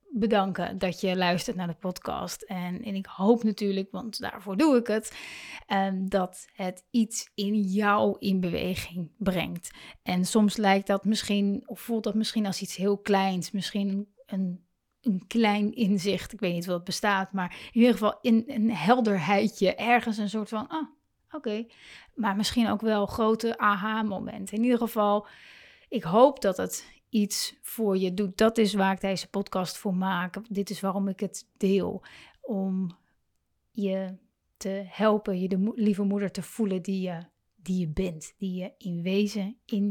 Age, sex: 30-49, female